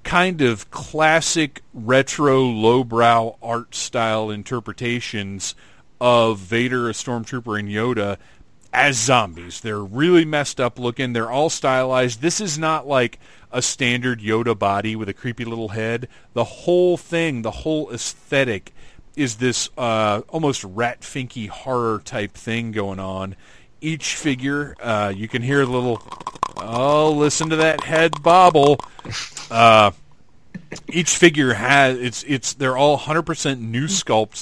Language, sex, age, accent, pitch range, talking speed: English, male, 40-59, American, 110-135 Hz, 140 wpm